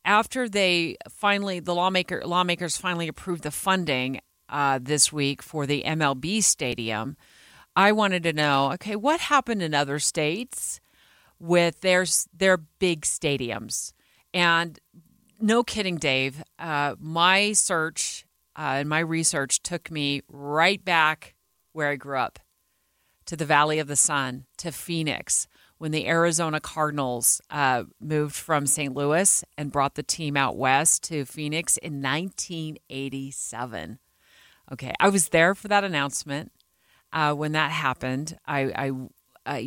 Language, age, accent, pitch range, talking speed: English, 40-59, American, 140-170 Hz, 140 wpm